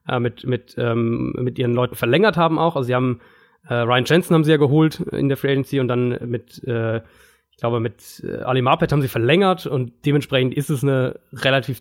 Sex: male